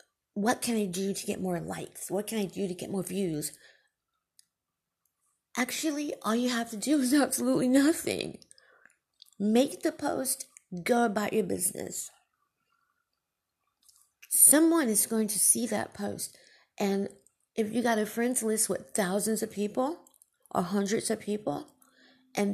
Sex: female